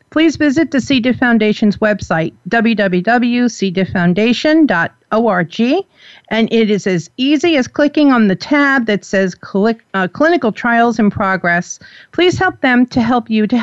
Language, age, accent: English, 50-69, American